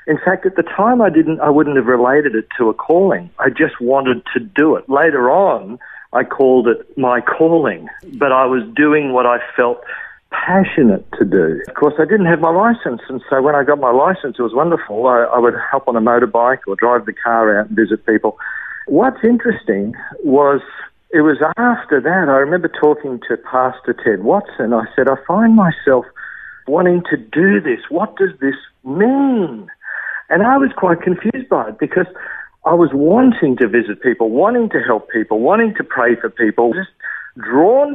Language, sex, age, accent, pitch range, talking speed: English, male, 50-69, Australian, 120-185 Hz, 195 wpm